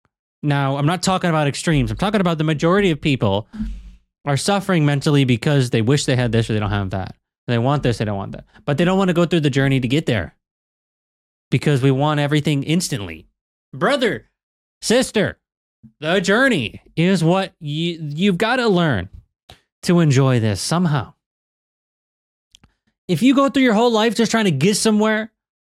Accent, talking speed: American, 185 wpm